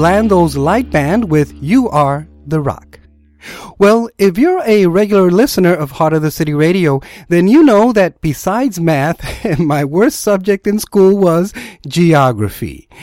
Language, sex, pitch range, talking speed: English, male, 150-215 Hz, 150 wpm